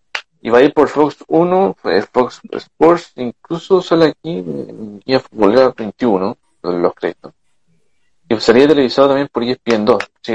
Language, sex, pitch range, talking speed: Spanish, male, 110-150 Hz, 145 wpm